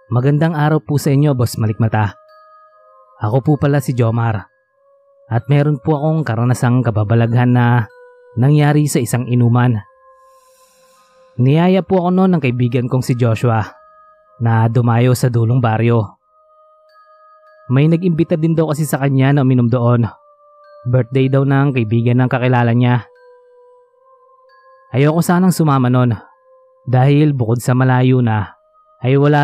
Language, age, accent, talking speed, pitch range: Filipino, 20-39, native, 135 wpm, 125-210 Hz